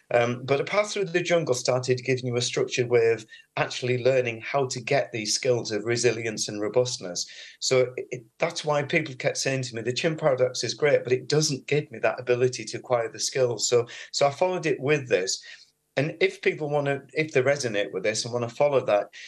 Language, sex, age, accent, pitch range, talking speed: English, male, 40-59, British, 120-150 Hz, 225 wpm